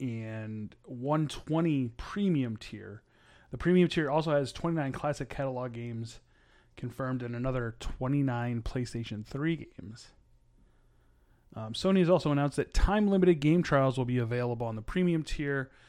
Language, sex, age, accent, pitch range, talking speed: English, male, 30-49, American, 115-150 Hz, 135 wpm